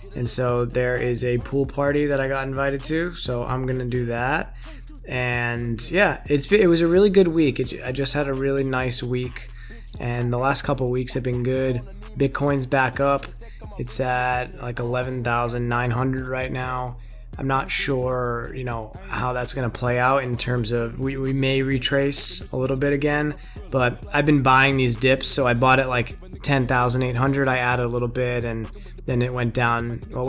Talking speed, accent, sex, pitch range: 195 wpm, American, male, 120-135 Hz